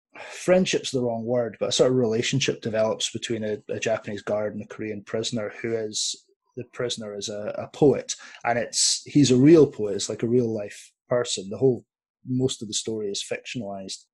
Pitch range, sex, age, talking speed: 110-125 Hz, male, 20-39, 200 wpm